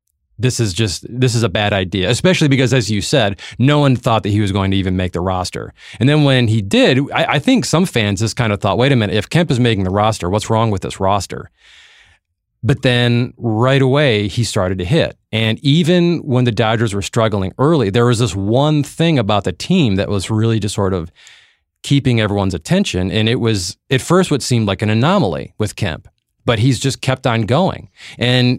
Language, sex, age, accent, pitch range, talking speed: English, male, 30-49, American, 100-130 Hz, 220 wpm